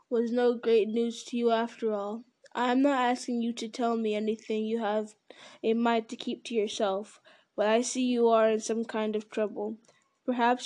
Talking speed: 205 wpm